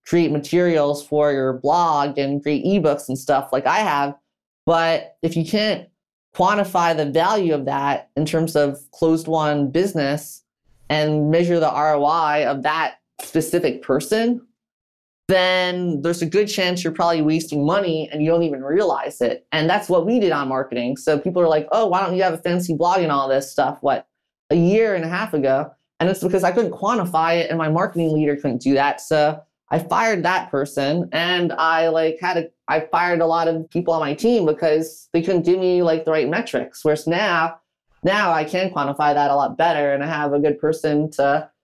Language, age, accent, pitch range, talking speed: English, 20-39, American, 145-170 Hz, 200 wpm